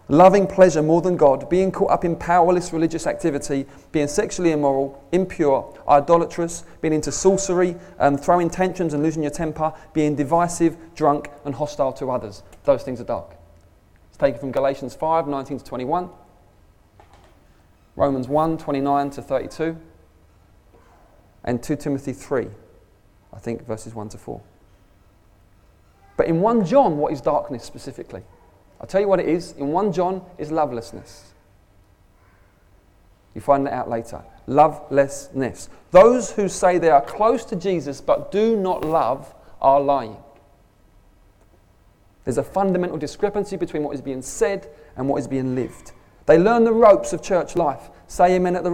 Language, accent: English, British